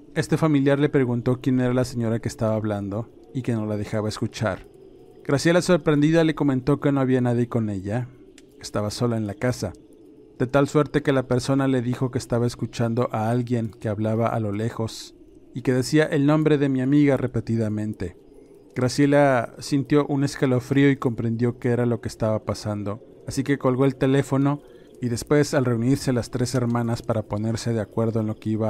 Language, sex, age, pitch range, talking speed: Spanish, male, 40-59, 115-135 Hz, 190 wpm